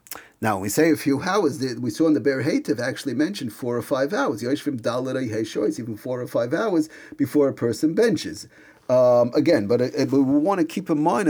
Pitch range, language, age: 115-155 Hz, English, 40-59